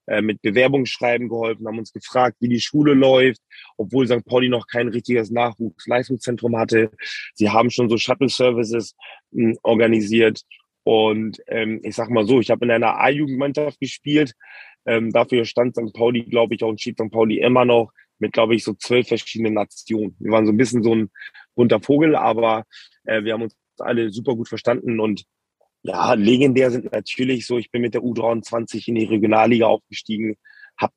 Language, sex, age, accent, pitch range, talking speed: German, male, 30-49, German, 115-130 Hz, 180 wpm